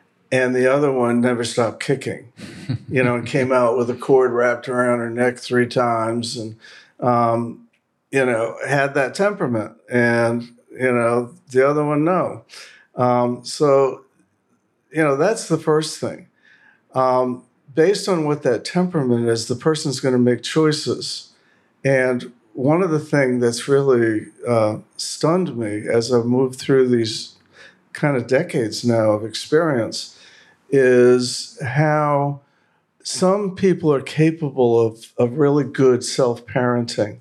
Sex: male